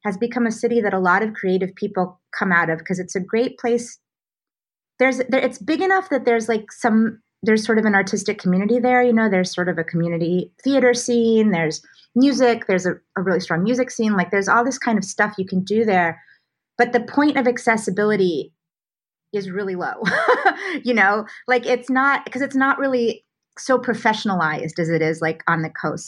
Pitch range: 170-230 Hz